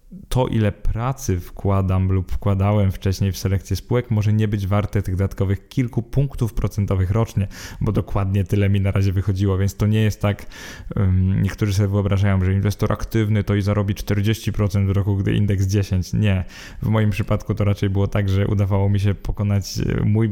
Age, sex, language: 20-39, male, Polish